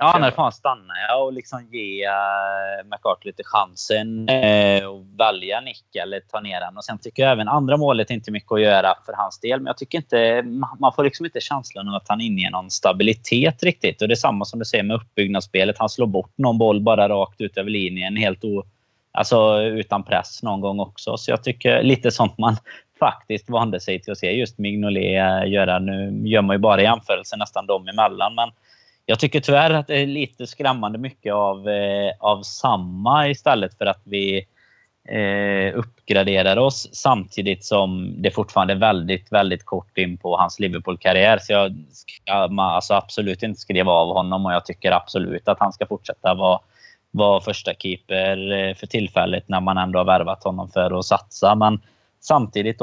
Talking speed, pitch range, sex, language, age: 195 wpm, 95-115 Hz, male, Swedish, 20-39